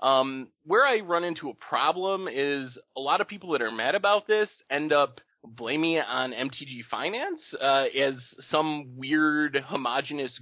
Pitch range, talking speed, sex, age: 135-180 Hz, 165 wpm, male, 20-39